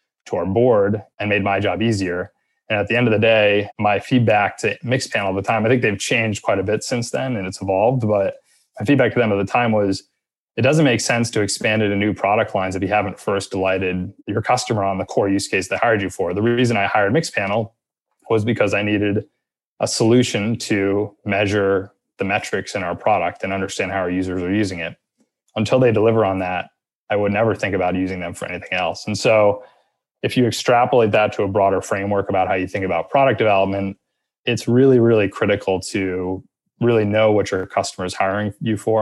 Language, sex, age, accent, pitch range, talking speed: English, male, 20-39, American, 95-110 Hz, 215 wpm